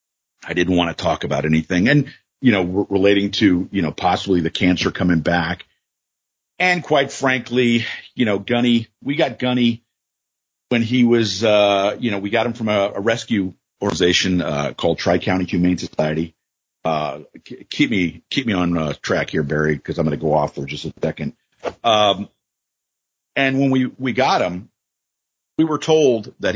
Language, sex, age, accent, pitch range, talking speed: English, male, 50-69, American, 85-120 Hz, 180 wpm